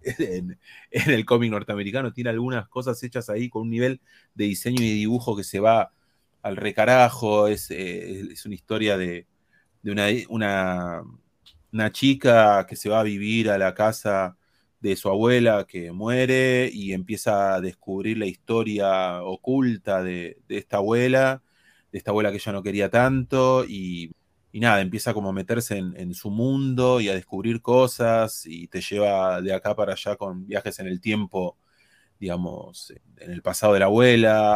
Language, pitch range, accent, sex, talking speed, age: Spanish, 95-115 Hz, Argentinian, male, 170 wpm, 30-49